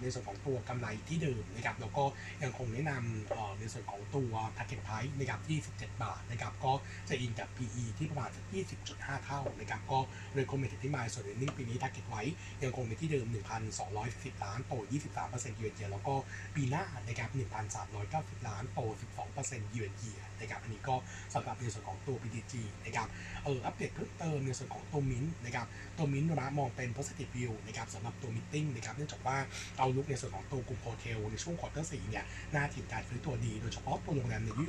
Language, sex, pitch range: Thai, male, 105-135 Hz